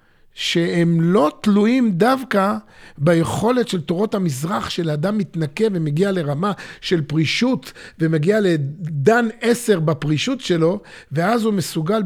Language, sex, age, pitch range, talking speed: Hebrew, male, 50-69, 165-215 Hz, 115 wpm